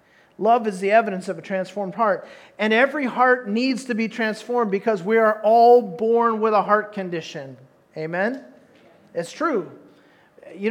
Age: 40-59